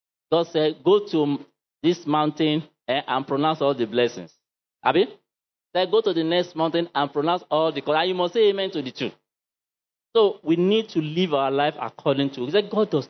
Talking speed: 190 wpm